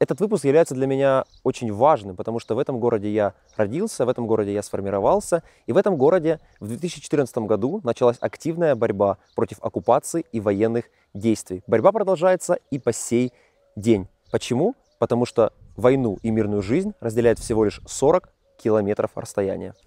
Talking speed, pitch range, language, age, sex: 160 wpm, 105-145 Hz, Russian, 20-39, male